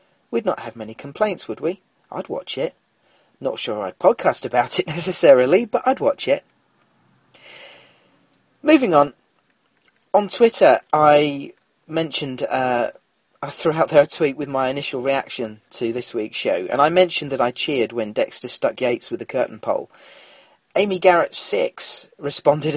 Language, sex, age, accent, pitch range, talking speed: English, male, 40-59, British, 130-180 Hz, 160 wpm